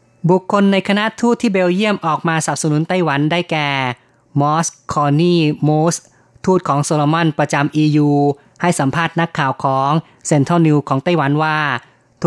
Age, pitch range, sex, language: 20-39, 140-165 Hz, female, Thai